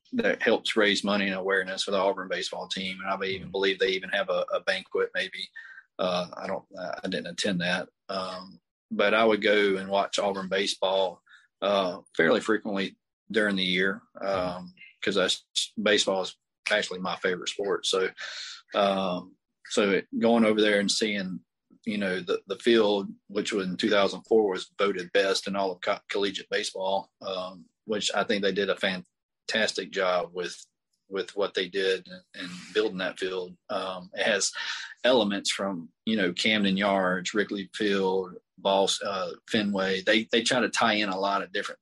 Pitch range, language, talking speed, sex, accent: 95-110 Hz, English, 175 wpm, male, American